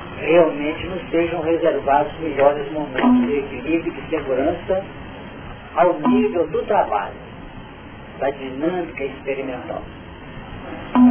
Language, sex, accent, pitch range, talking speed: Portuguese, male, Brazilian, 145-180 Hz, 105 wpm